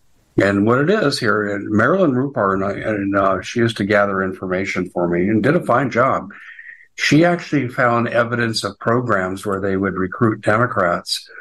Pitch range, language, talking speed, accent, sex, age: 100-115 Hz, English, 165 wpm, American, male, 60-79